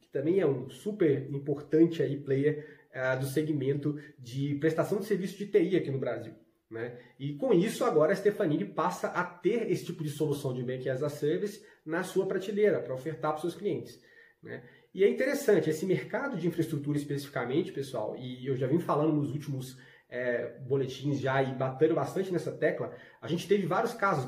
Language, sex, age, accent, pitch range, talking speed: Portuguese, male, 20-39, Brazilian, 130-175 Hz, 190 wpm